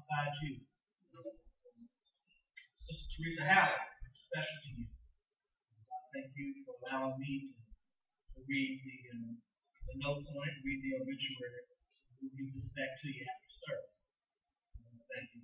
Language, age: English, 30-49